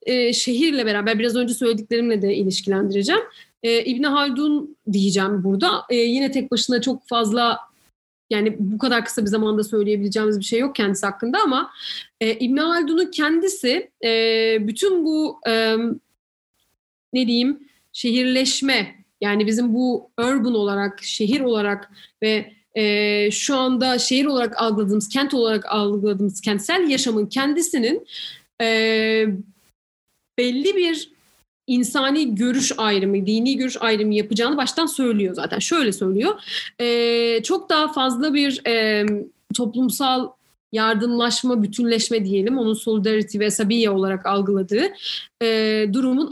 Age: 30-49